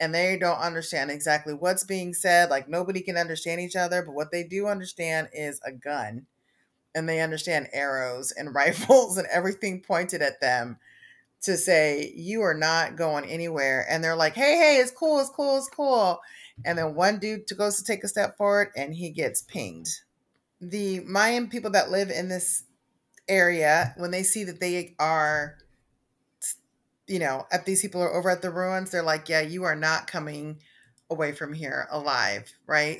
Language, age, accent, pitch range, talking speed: English, 30-49, American, 145-185 Hz, 185 wpm